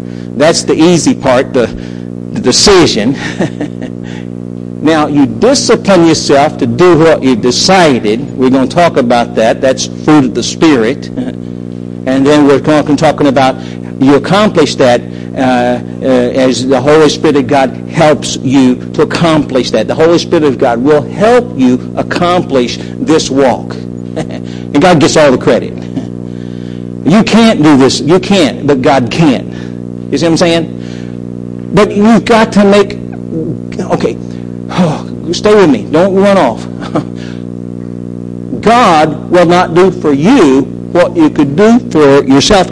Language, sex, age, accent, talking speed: English, male, 50-69, American, 145 wpm